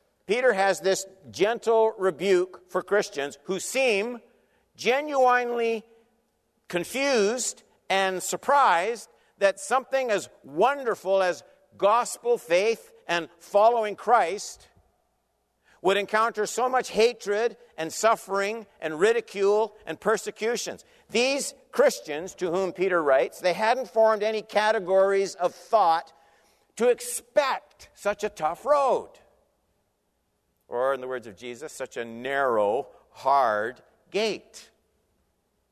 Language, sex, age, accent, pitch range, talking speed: English, male, 50-69, American, 160-245 Hz, 110 wpm